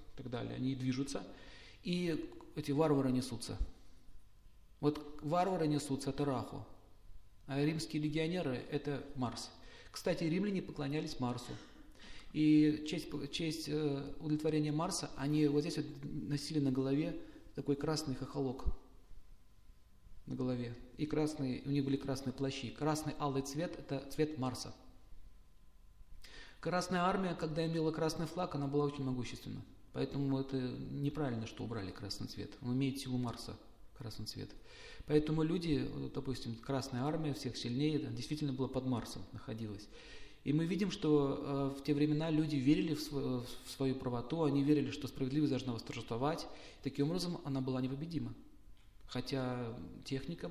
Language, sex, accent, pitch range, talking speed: Russian, male, native, 125-150 Hz, 135 wpm